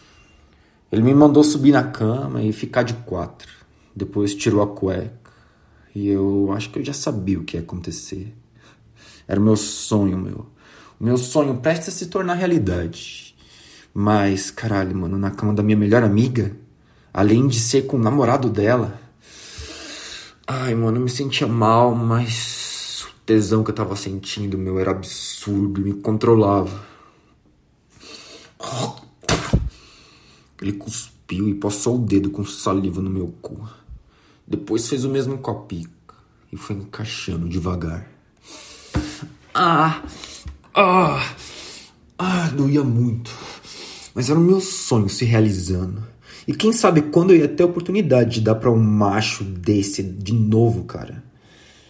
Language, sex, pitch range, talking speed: Portuguese, male, 100-125 Hz, 140 wpm